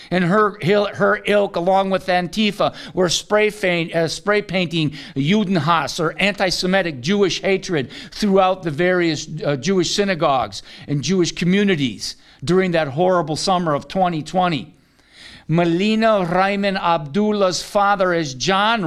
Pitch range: 170-220 Hz